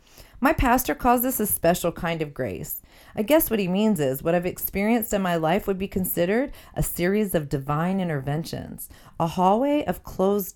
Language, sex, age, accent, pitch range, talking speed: English, female, 40-59, American, 150-200 Hz, 190 wpm